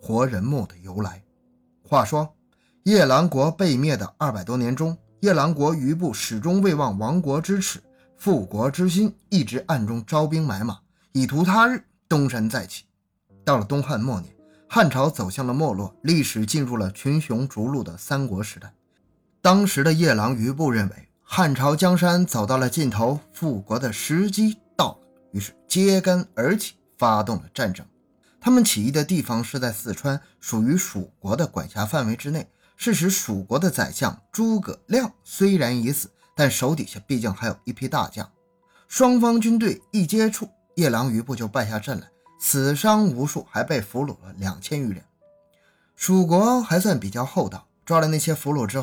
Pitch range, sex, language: 115-180 Hz, male, Chinese